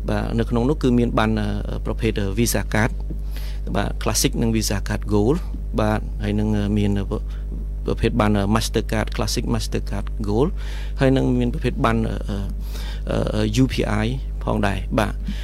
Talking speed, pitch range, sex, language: 95 wpm, 105-120 Hz, male, English